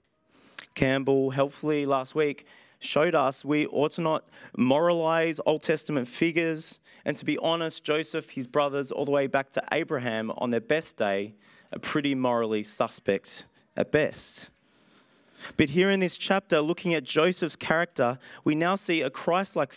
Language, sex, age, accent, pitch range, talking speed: English, male, 20-39, Australian, 130-165 Hz, 155 wpm